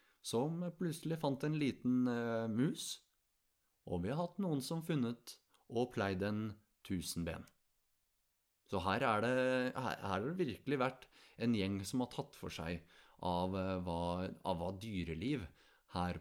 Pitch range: 95-130 Hz